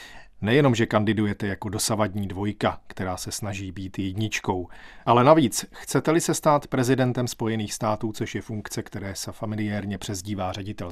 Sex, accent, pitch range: male, native, 105-130 Hz